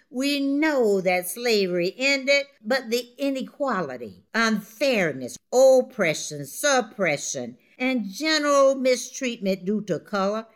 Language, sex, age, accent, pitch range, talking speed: English, female, 60-79, American, 180-255 Hz, 95 wpm